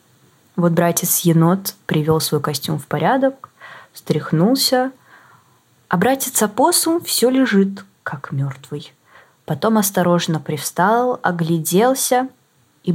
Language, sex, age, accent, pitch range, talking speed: Ukrainian, female, 20-39, native, 165-240 Hz, 95 wpm